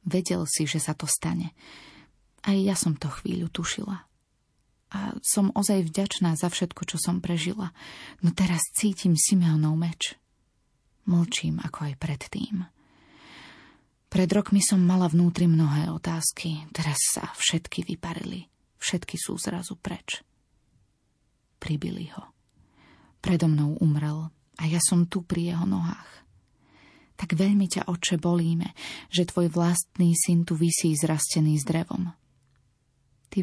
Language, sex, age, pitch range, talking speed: Slovak, female, 30-49, 155-185 Hz, 130 wpm